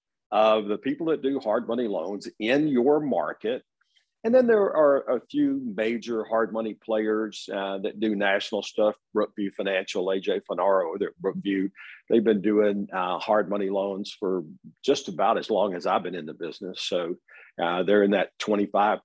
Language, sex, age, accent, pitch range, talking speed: English, male, 50-69, American, 100-125 Hz, 175 wpm